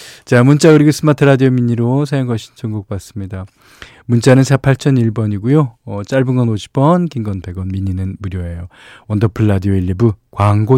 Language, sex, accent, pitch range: Korean, male, native, 105-145 Hz